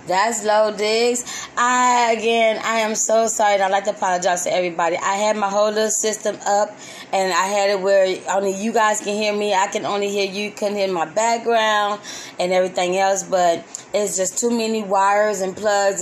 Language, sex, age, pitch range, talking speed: English, female, 20-39, 175-225 Hz, 200 wpm